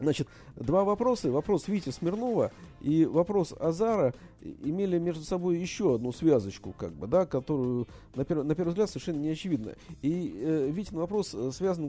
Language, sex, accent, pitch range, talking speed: Russian, male, native, 125-170 Hz, 160 wpm